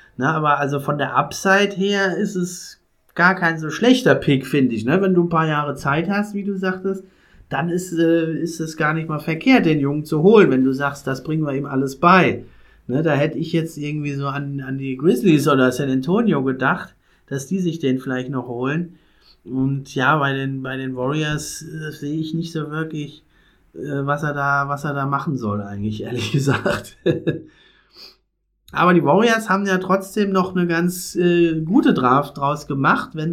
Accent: German